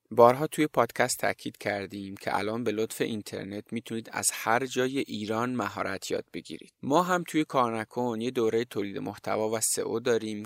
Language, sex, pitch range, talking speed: Persian, male, 105-130 Hz, 165 wpm